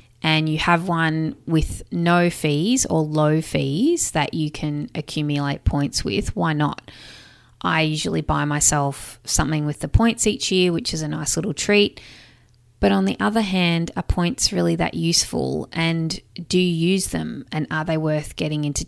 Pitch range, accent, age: 145-180 Hz, Australian, 20-39